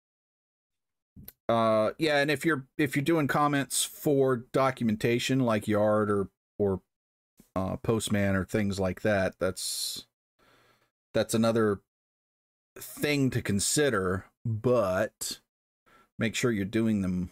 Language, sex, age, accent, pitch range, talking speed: English, male, 40-59, American, 100-130 Hz, 115 wpm